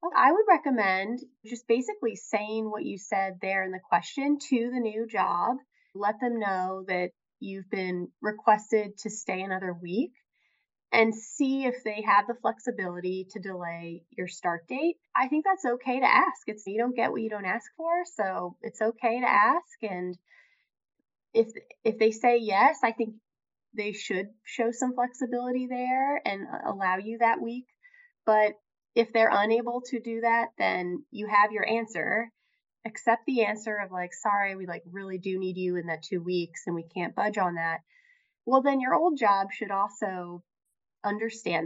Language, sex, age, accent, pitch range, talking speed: English, female, 20-39, American, 195-250 Hz, 175 wpm